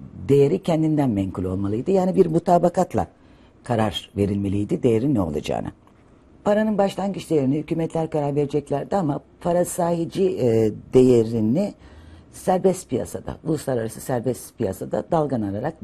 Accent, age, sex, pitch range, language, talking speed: native, 60-79, female, 100-160 Hz, Turkish, 110 wpm